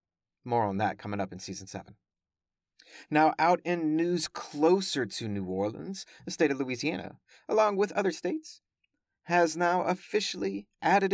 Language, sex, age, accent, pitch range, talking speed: English, male, 30-49, American, 110-185 Hz, 150 wpm